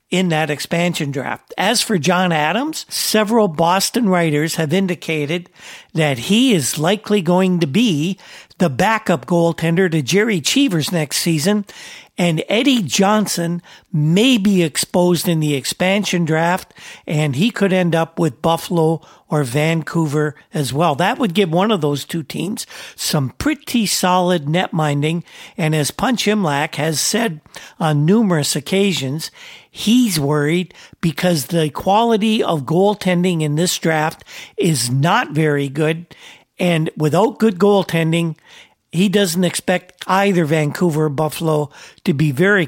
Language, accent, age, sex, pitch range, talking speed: English, American, 50-69, male, 155-195 Hz, 140 wpm